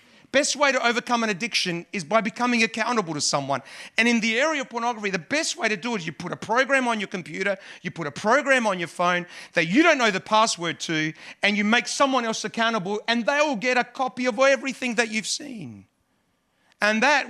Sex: male